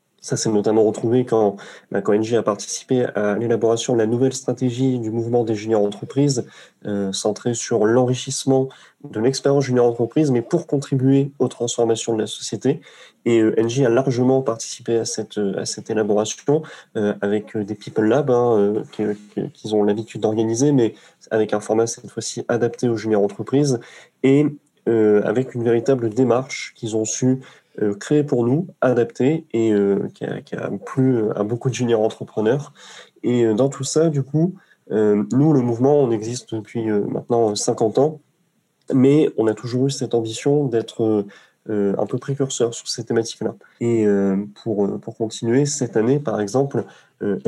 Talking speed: 175 wpm